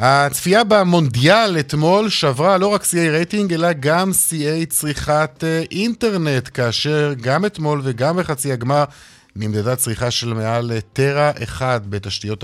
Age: 50-69